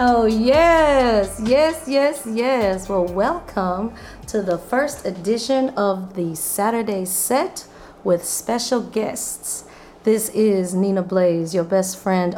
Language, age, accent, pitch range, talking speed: English, 40-59, American, 185-220 Hz, 120 wpm